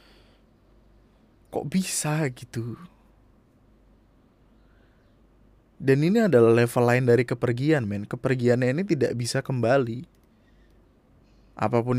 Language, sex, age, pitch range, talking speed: Indonesian, male, 20-39, 110-130 Hz, 85 wpm